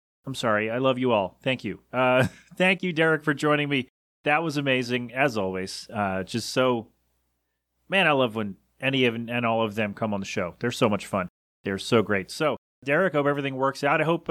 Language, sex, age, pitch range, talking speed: English, male, 30-49, 110-150 Hz, 220 wpm